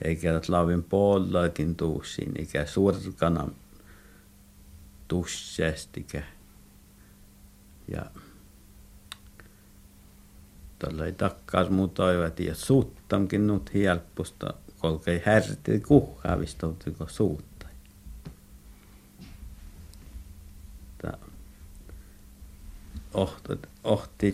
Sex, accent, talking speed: male, native, 60 wpm